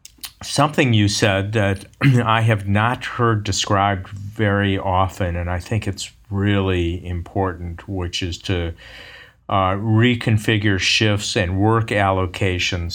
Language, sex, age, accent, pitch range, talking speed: English, male, 50-69, American, 90-105 Hz, 120 wpm